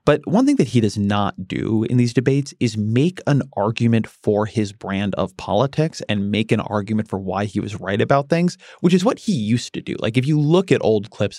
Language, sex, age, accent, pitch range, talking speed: English, male, 30-49, American, 105-130 Hz, 235 wpm